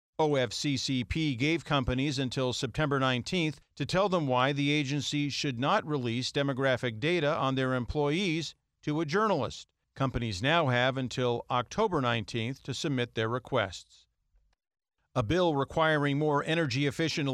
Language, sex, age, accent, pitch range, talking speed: English, male, 50-69, American, 130-165 Hz, 130 wpm